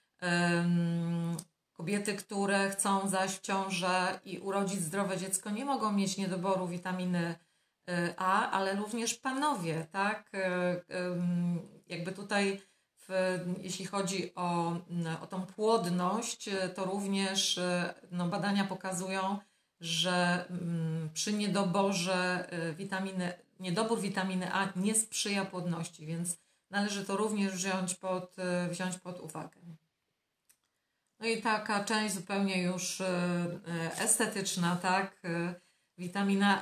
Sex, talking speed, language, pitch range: female, 100 wpm, Polish, 175-195 Hz